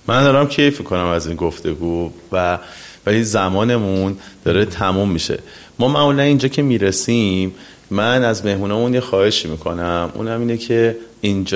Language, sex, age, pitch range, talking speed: Persian, male, 30-49, 95-120 Hz, 145 wpm